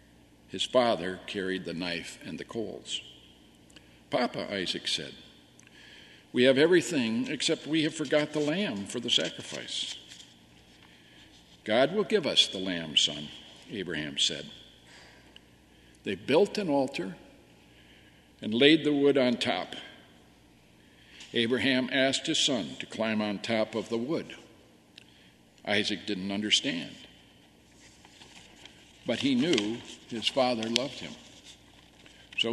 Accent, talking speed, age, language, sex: American, 120 wpm, 60-79, English, male